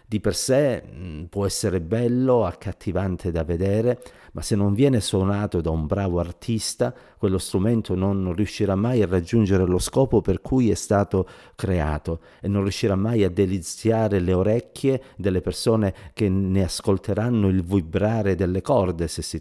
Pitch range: 90-110 Hz